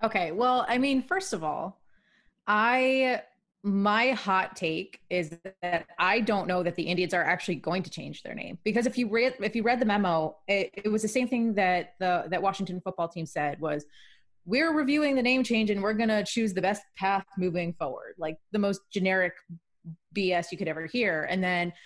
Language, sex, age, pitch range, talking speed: English, female, 20-39, 175-225 Hz, 205 wpm